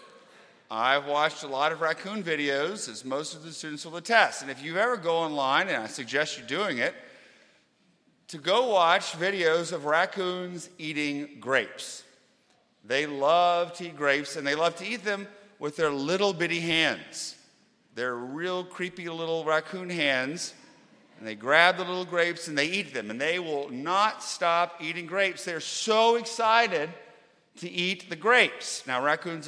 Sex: male